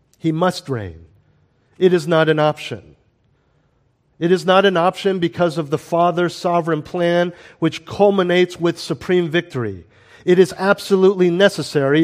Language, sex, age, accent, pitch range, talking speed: English, male, 50-69, American, 125-175 Hz, 140 wpm